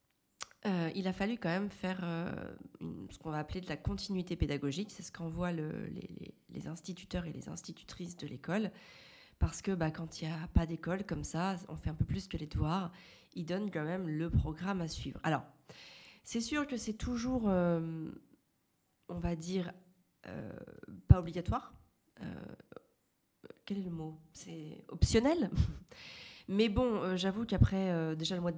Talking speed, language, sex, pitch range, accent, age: 180 wpm, French, female, 155-195 Hz, French, 30-49